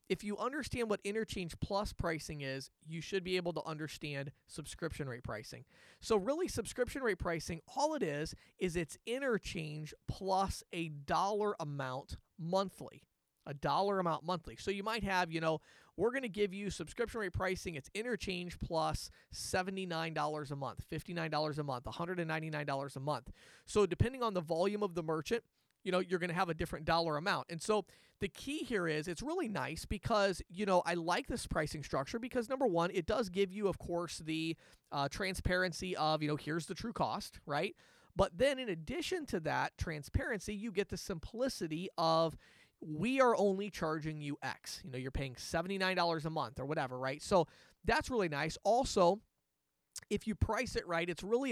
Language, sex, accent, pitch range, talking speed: English, male, American, 155-205 Hz, 185 wpm